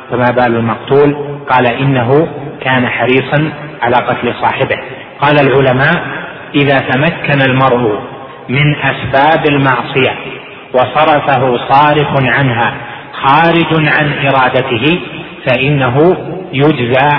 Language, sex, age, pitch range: Arabic, male, 30-49, 125-145 Hz